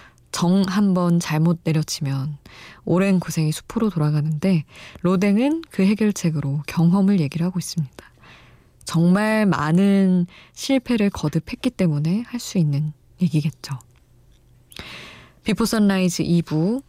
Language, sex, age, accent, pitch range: Korean, female, 20-39, native, 155-205 Hz